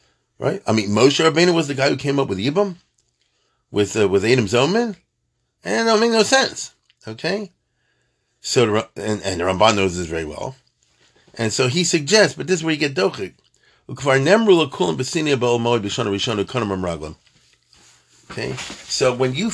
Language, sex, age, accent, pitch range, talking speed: English, male, 40-59, American, 115-160 Hz, 145 wpm